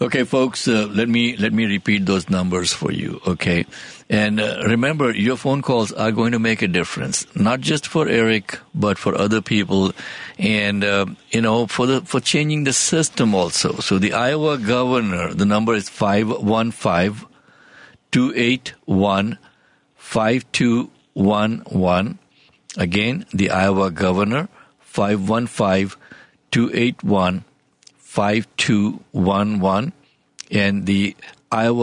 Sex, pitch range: male, 100-120 Hz